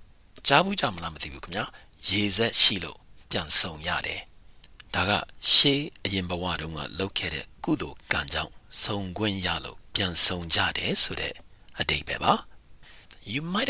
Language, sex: English, male